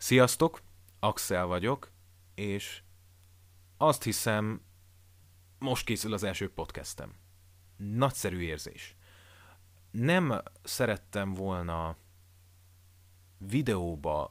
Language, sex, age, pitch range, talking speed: Hungarian, male, 30-49, 90-100 Hz, 75 wpm